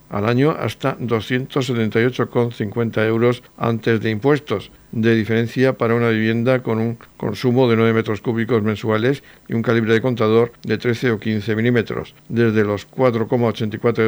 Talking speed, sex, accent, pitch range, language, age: 145 wpm, male, Spanish, 115-125 Hz, Spanish, 60-79